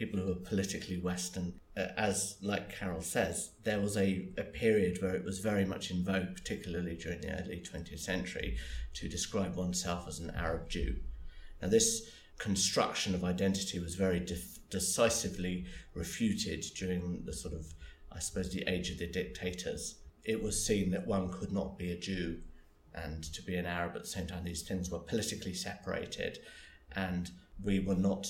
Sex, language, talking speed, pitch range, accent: male, English, 170 wpm, 85-95 Hz, British